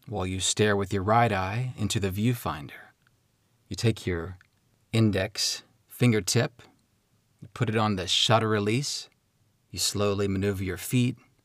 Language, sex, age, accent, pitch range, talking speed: English, male, 30-49, American, 105-125 Hz, 140 wpm